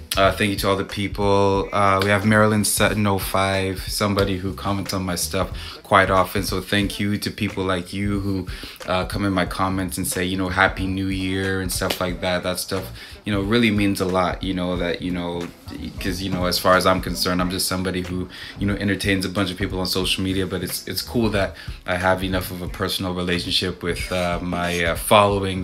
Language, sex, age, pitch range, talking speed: English, male, 20-39, 95-105 Hz, 225 wpm